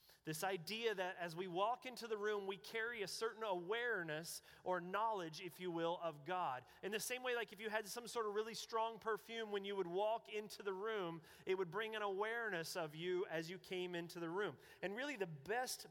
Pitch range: 165-210 Hz